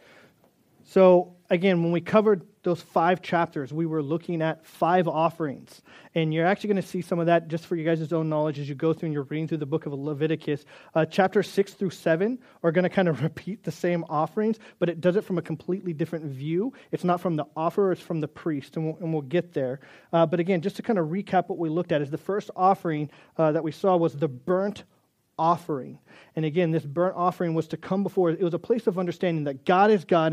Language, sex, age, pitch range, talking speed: English, male, 30-49, 155-190 Hz, 240 wpm